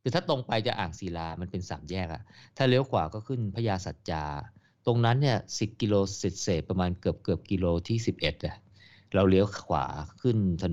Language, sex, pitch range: Thai, male, 90-110 Hz